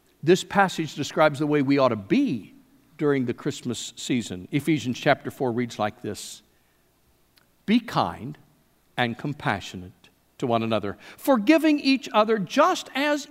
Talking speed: 140 wpm